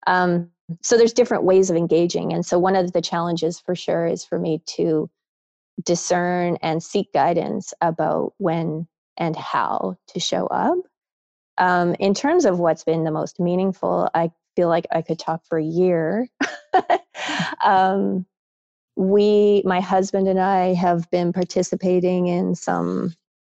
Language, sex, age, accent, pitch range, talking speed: English, female, 20-39, American, 165-190 Hz, 150 wpm